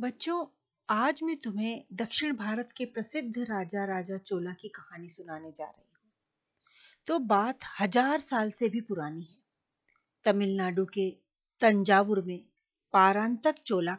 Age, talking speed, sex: 40-59, 135 wpm, female